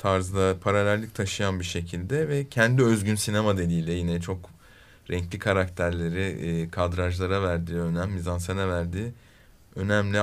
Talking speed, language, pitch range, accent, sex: 110 wpm, Turkish, 95-125 Hz, native, male